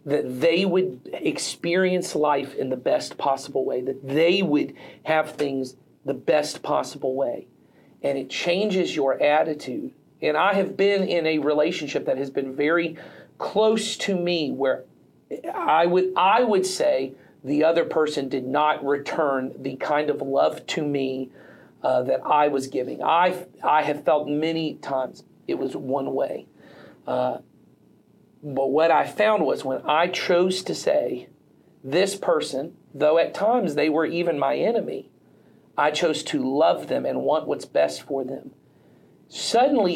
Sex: male